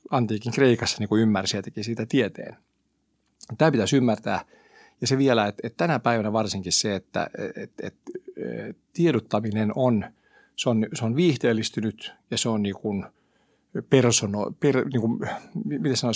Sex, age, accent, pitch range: male, 50-69, native, 105-140 Hz